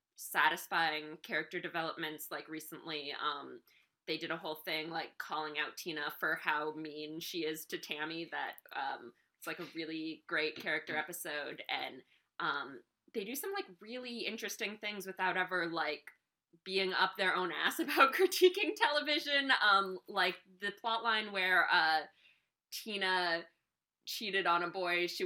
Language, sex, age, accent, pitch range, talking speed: English, female, 20-39, American, 165-210 Hz, 150 wpm